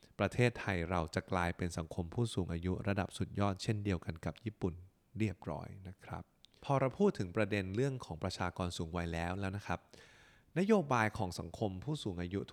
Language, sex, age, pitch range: Thai, male, 20-39, 90-115 Hz